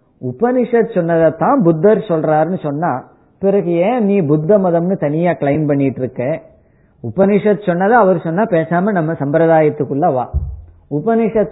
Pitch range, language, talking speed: 140-190 Hz, Tamil, 120 wpm